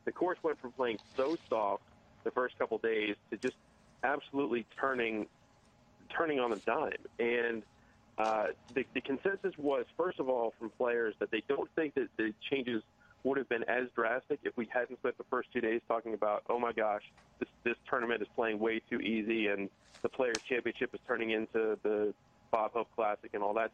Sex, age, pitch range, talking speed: male, 40-59, 110-130 Hz, 195 wpm